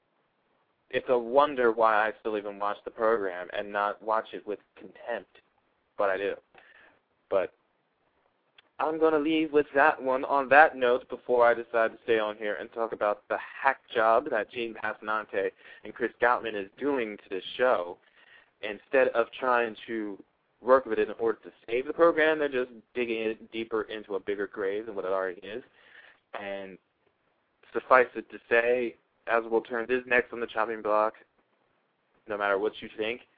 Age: 20-39